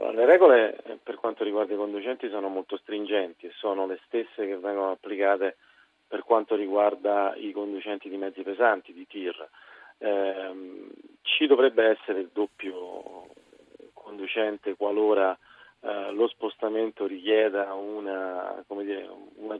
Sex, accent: male, native